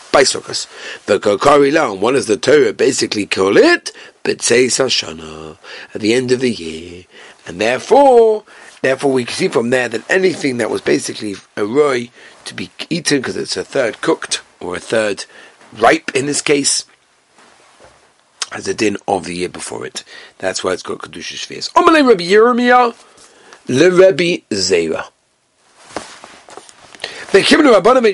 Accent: British